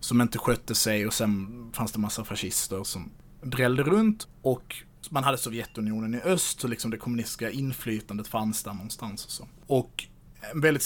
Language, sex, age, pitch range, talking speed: Swedish, male, 30-49, 110-130 Hz, 180 wpm